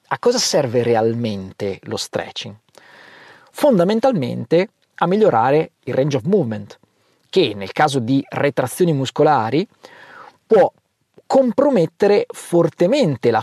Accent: native